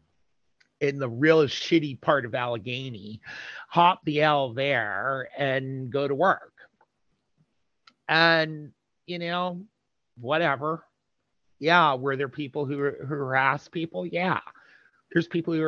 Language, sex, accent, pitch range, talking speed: English, male, American, 115-150 Hz, 120 wpm